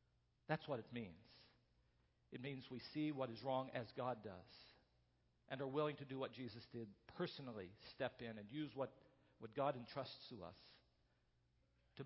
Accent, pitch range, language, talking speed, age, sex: American, 115-160 Hz, English, 170 wpm, 50-69, male